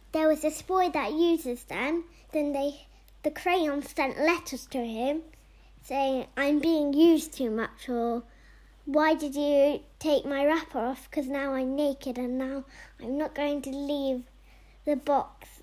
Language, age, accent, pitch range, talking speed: English, 10-29, British, 260-315 Hz, 160 wpm